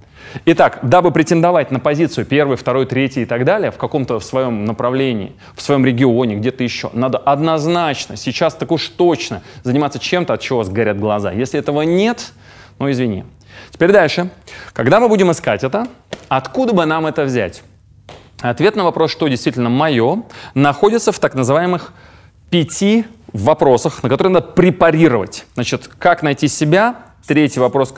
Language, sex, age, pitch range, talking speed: Russian, male, 20-39, 120-170 Hz, 150 wpm